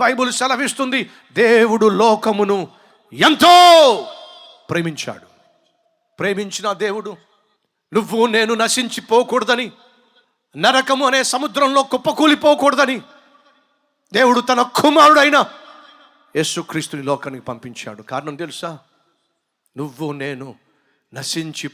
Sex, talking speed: male, 70 wpm